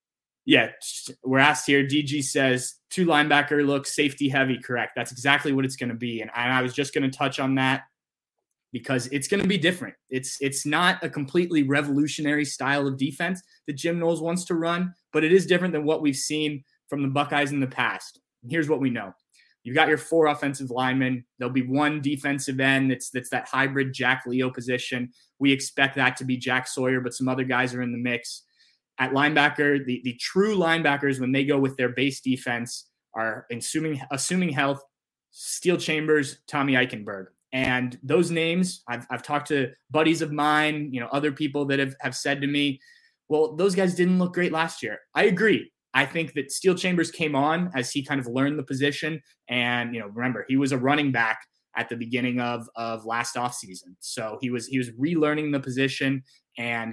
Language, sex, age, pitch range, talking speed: English, male, 20-39, 125-150 Hz, 205 wpm